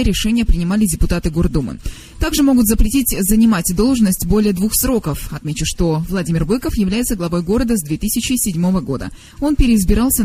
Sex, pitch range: female, 180-240 Hz